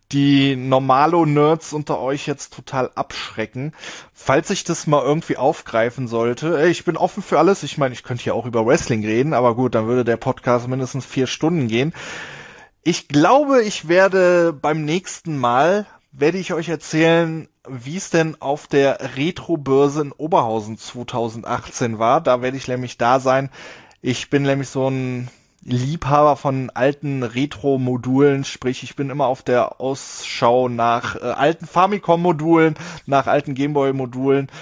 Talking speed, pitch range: 155 wpm, 130-165 Hz